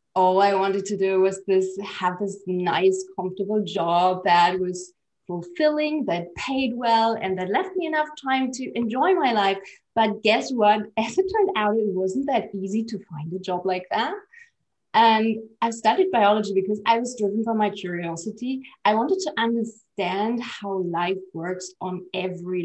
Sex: female